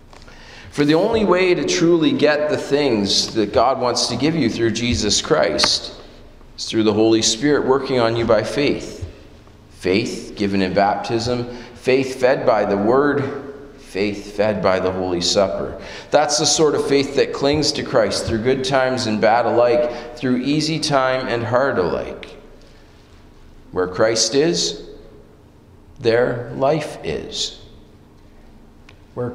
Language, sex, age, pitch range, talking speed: English, male, 40-59, 105-130 Hz, 145 wpm